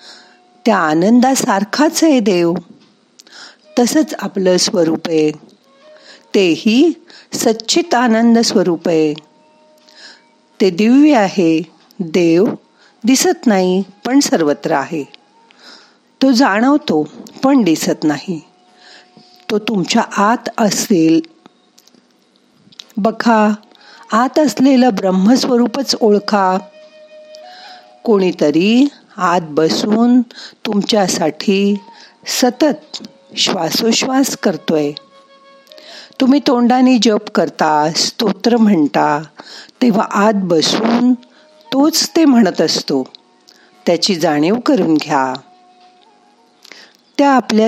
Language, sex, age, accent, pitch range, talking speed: Marathi, female, 50-69, native, 175-270 Hz, 70 wpm